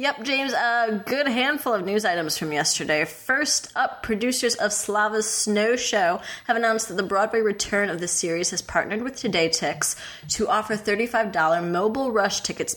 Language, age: English, 20-39